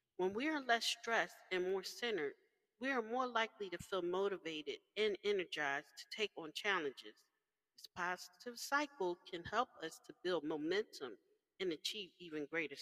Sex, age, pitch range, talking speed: female, 40-59, 175-285 Hz, 160 wpm